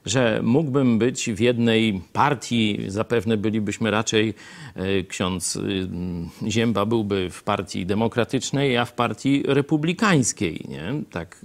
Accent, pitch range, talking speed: native, 110-170 Hz, 120 wpm